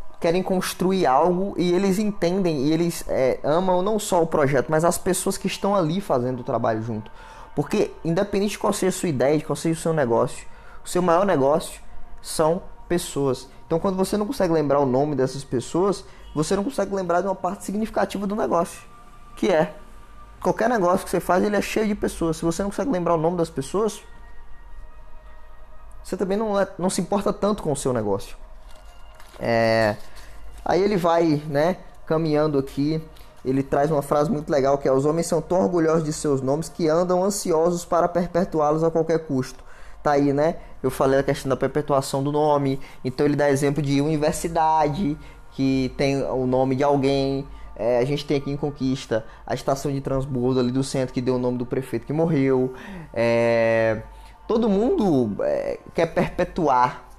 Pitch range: 130-180 Hz